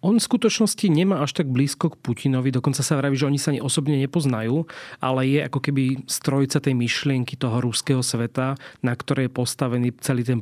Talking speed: 195 wpm